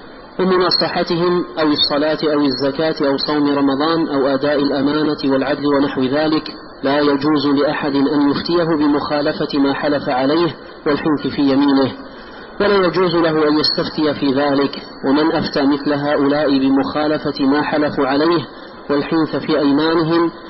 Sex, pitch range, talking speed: male, 140-160 Hz, 130 wpm